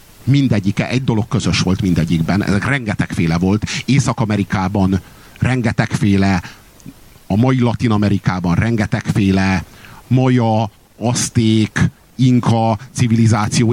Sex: male